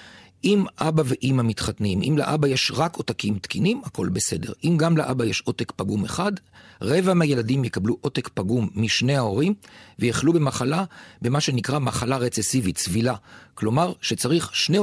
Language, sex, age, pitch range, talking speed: Hebrew, male, 40-59, 110-150 Hz, 145 wpm